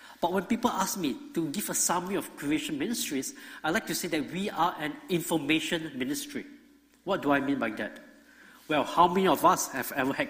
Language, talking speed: English, 210 wpm